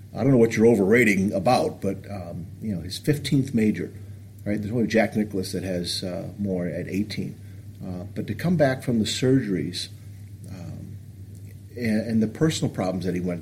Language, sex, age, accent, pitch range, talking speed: English, male, 50-69, American, 100-120 Hz, 190 wpm